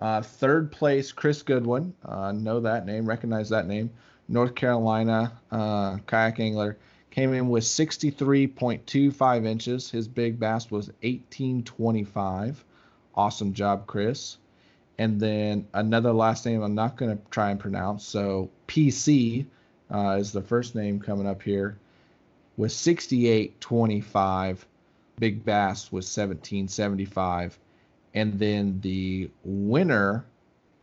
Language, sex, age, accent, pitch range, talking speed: English, male, 30-49, American, 100-120 Hz, 120 wpm